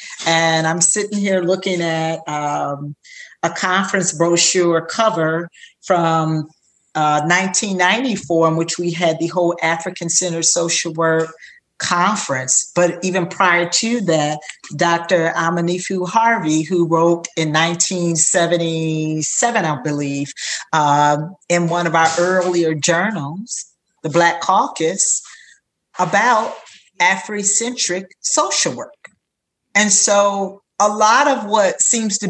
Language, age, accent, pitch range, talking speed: English, 40-59, American, 160-190 Hz, 115 wpm